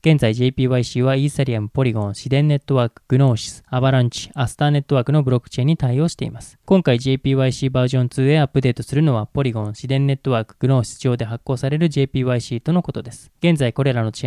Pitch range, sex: 120-145 Hz, male